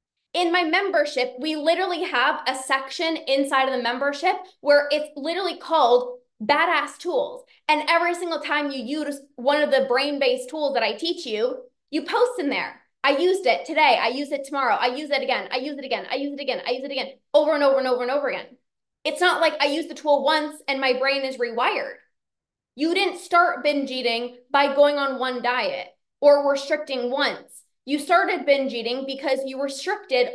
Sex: female